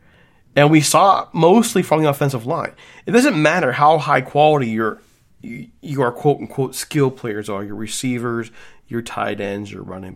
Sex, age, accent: male, 40-59, American